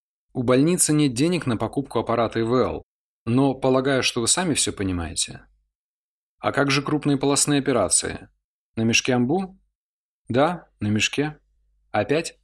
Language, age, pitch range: Russian, 20-39, 100-130 Hz